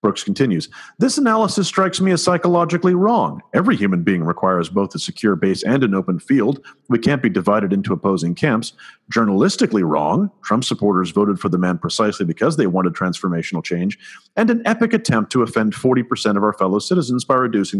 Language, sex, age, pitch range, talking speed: English, male, 40-59, 100-135 Hz, 185 wpm